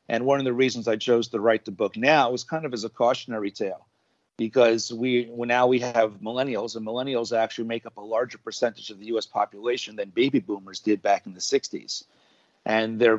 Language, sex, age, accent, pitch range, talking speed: English, male, 40-59, American, 110-125 Hz, 220 wpm